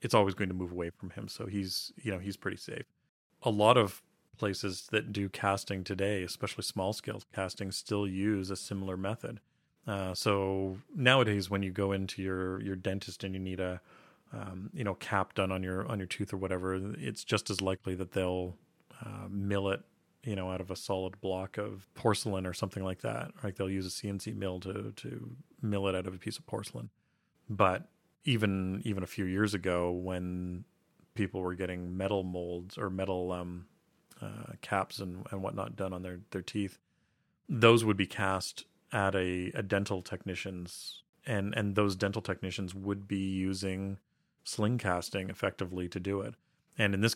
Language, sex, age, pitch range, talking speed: English, male, 30-49, 95-105 Hz, 190 wpm